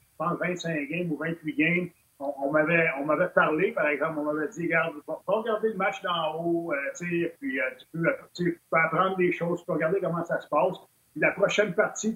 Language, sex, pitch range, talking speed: French, male, 160-205 Hz, 220 wpm